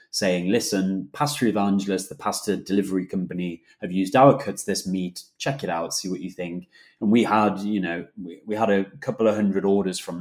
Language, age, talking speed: English, 20-39, 205 wpm